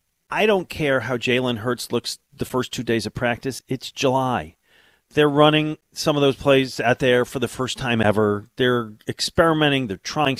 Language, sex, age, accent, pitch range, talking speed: English, male, 40-59, American, 125-180 Hz, 185 wpm